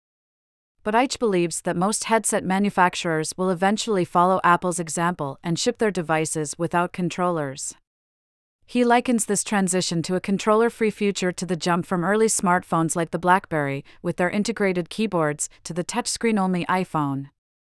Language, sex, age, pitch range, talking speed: English, female, 40-59, 165-200 Hz, 145 wpm